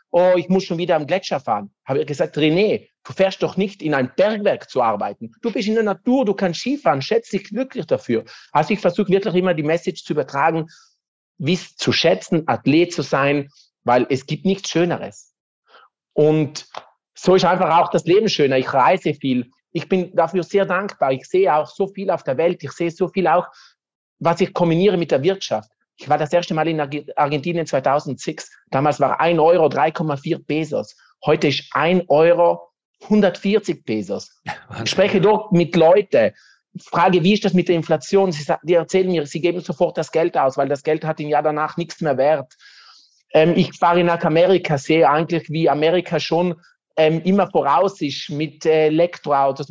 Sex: male